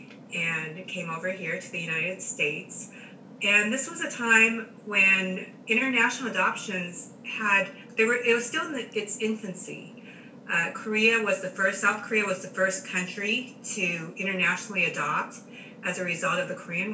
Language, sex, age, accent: English, female, 30-49, American